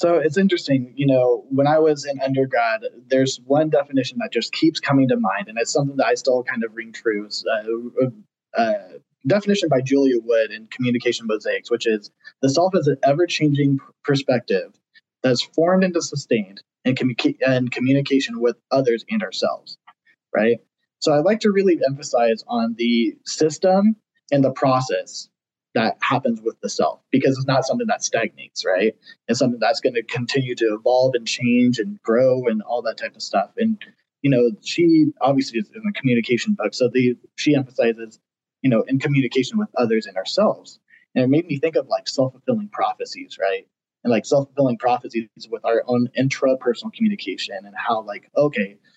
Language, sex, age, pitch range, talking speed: English, male, 20-39, 120-170 Hz, 185 wpm